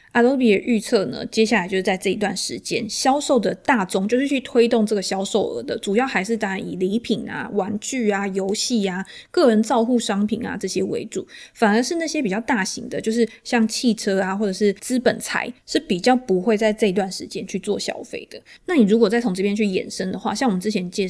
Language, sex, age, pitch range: Chinese, female, 20-39, 195-230 Hz